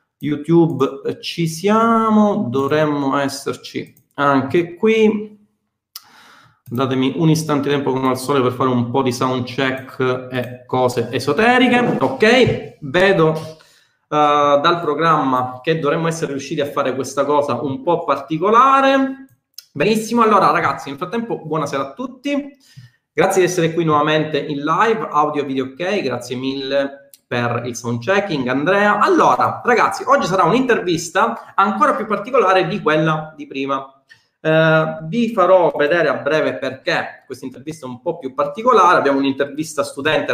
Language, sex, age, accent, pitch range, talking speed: Italian, male, 30-49, native, 130-185 Hz, 140 wpm